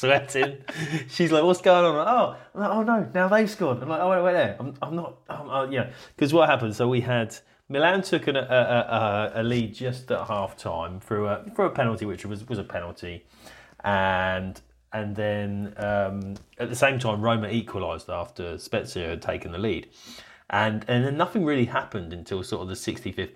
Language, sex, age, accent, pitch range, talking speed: English, male, 30-49, British, 100-130 Hz, 205 wpm